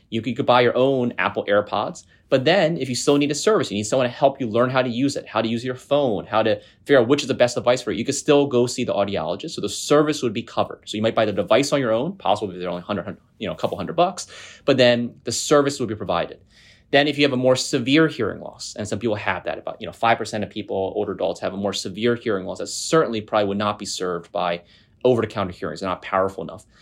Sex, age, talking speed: male, 30-49, 275 wpm